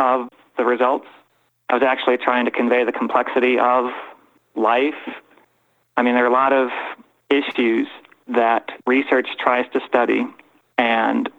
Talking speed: 140 wpm